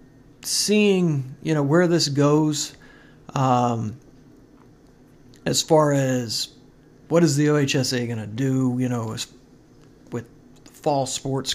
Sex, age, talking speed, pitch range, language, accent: male, 50-69, 115 wpm, 125-145 Hz, English, American